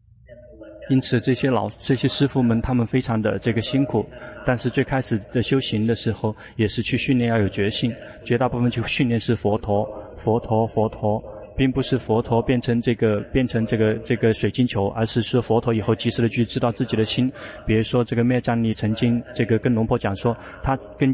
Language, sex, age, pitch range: Chinese, male, 20-39, 110-125 Hz